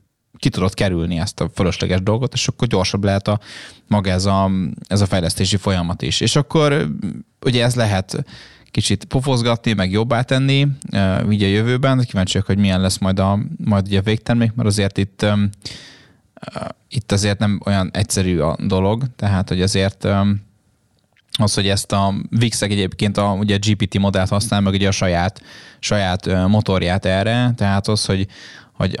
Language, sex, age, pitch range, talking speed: Hungarian, male, 20-39, 95-110 Hz, 165 wpm